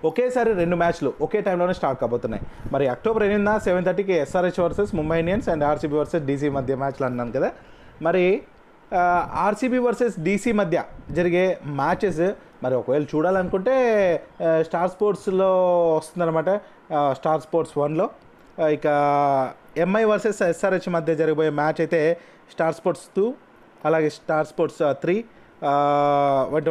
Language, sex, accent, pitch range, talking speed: Telugu, male, native, 150-195 Hz, 125 wpm